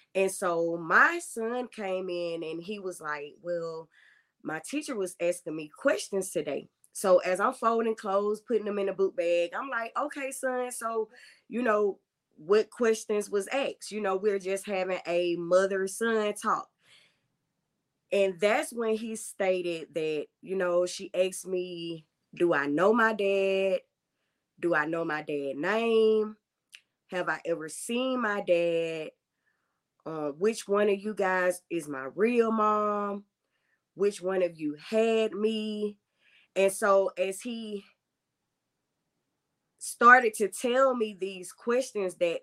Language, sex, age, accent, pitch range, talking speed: English, female, 20-39, American, 175-220 Hz, 145 wpm